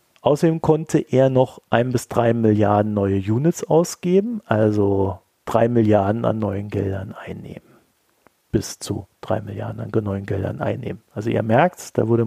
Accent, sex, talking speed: German, male, 150 wpm